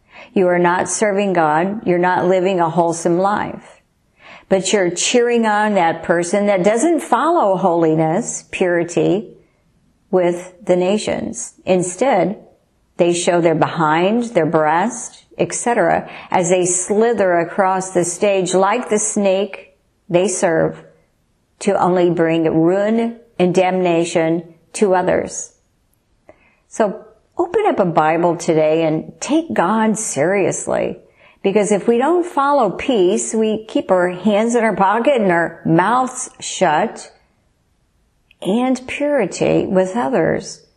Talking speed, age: 120 wpm, 50-69